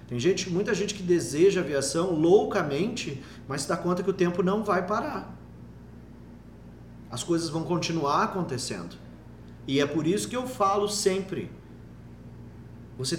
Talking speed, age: 145 wpm, 40-59